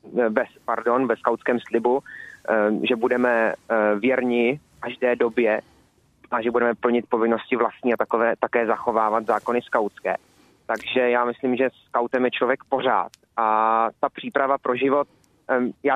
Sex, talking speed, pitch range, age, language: male, 145 wpm, 120-135 Hz, 20-39, Czech